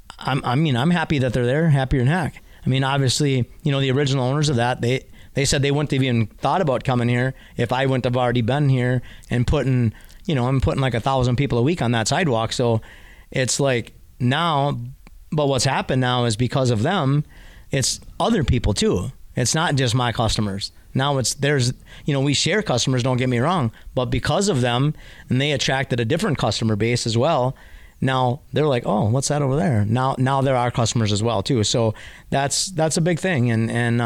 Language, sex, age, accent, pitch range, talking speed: English, male, 30-49, American, 120-140 Hz, 215 wpm